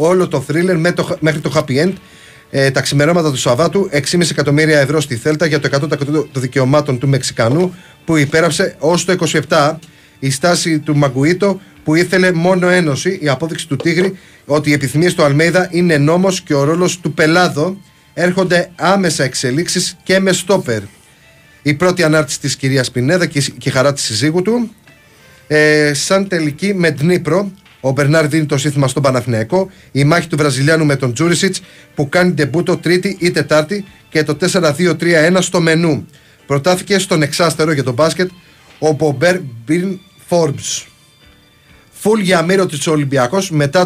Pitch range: 145-175 Hz